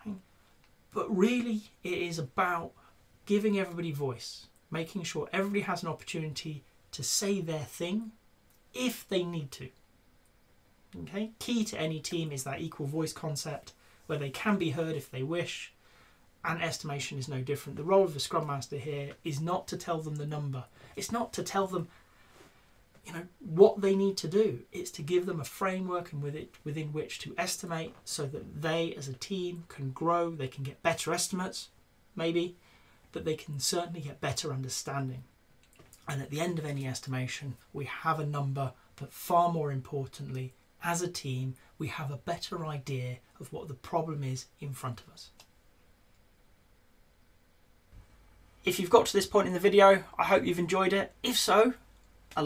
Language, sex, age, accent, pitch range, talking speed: English, male, 30-49, British, 135-180 Hz, 175 wpm